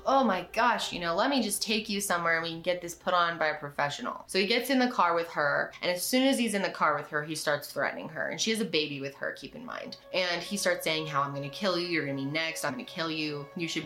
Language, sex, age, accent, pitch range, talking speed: English, female, 20-39, American, 160-205 Hz, 310 wpm